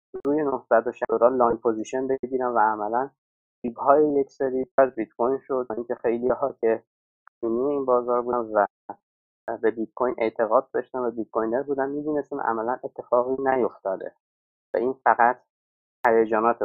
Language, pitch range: Persian, 115-140 Hz